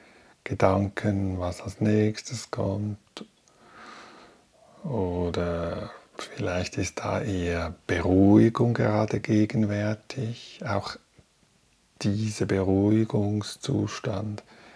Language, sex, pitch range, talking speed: German, male, 95-115 Hz, 65 wpm